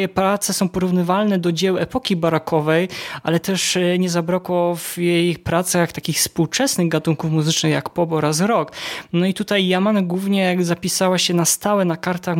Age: 20-39